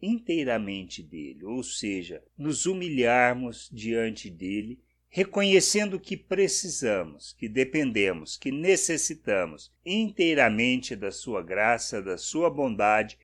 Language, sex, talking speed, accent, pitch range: Portuguese, male, 100 wpm, Brazilian, 120-175 Hz